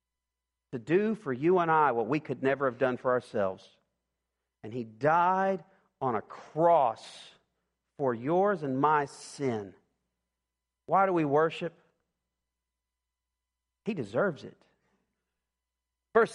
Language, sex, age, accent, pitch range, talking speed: English, male, 40-59, American, 130-190 Hz, 120 wpm